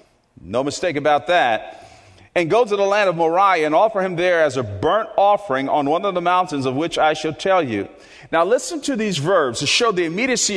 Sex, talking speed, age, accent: male, 220 wpm, 40-59, American